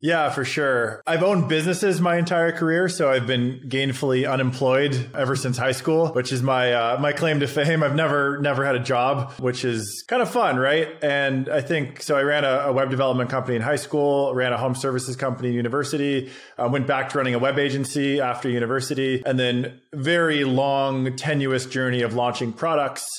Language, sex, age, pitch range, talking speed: English, male, 20-39, 125-145 Hz, 200 wpm